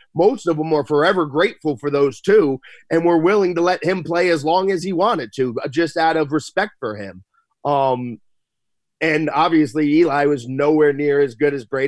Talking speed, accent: 195 wpm, American